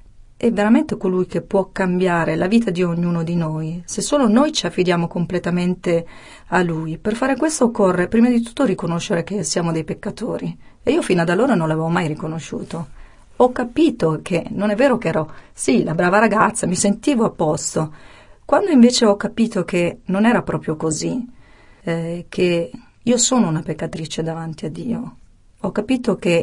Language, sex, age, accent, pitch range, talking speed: Italian, female, 40-59, native, 165-215 Hz, 175 wpm